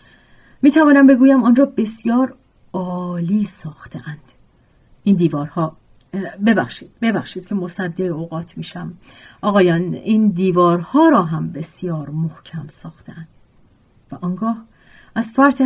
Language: Persian